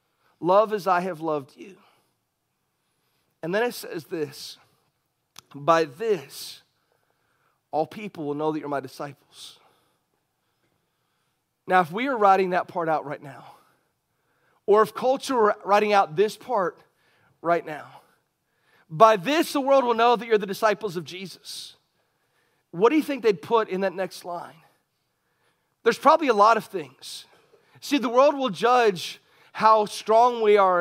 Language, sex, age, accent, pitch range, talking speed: English, male, 40-59, American, 170-225 Hz, 150 wpm